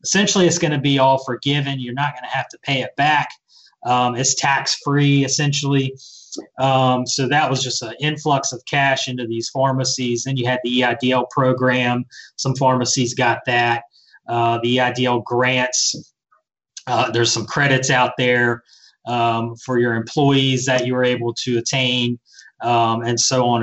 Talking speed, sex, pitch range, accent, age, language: 170 wpm, male, 120-135 Hz, American, 30-49, English